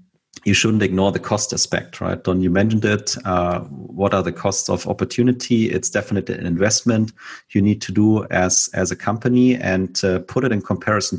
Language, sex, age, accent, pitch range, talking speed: German, male, 40-59, German, 90-110 Hz, 195 wpm